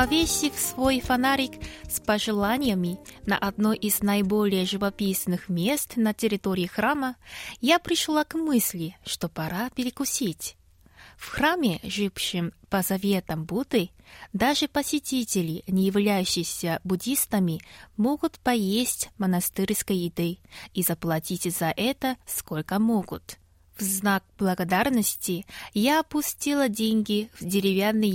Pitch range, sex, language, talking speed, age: 185-240 Hz, female, Russian, 105 wpm, 20-39